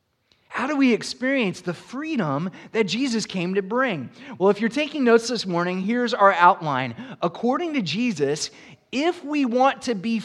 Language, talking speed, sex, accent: English, 170 wpm, male, American